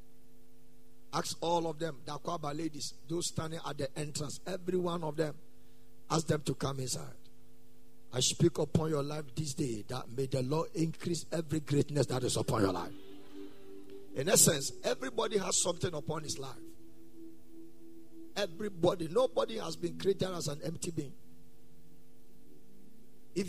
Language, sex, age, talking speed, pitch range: English, male, 50-69, 150 wpm, 125-165 Hz